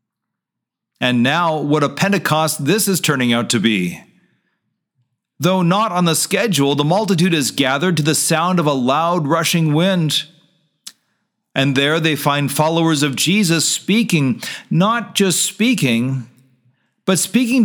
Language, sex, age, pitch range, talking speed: English, male, 40-59, 140-200 Hz, 140 wpm